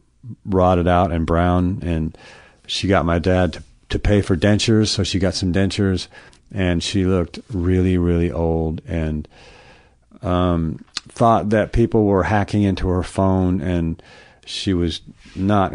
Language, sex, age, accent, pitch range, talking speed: English, male, 50-69, American, 85-95 Hz, 150 wpm